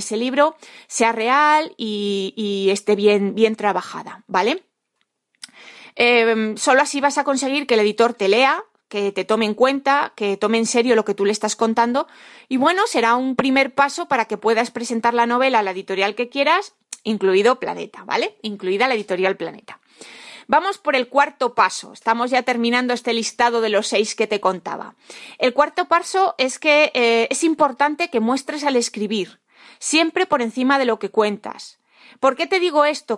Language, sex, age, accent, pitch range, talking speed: Spanish, female, 30-49, Spanish, 215-275 Hz, 185 wpm